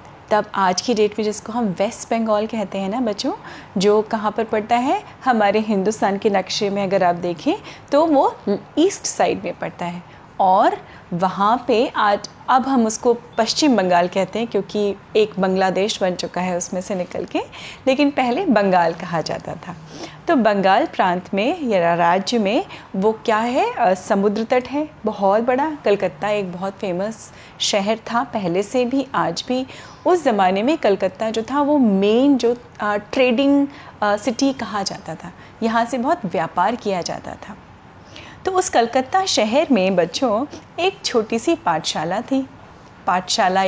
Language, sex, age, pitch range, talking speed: Hindi, female, 30-49, 200-260 Hz, 165 wpm